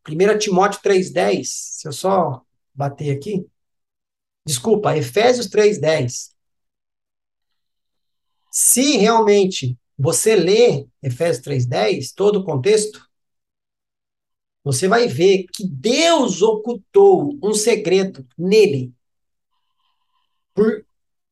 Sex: male